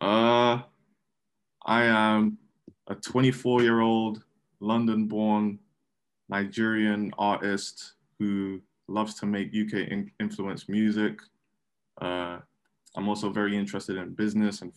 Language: English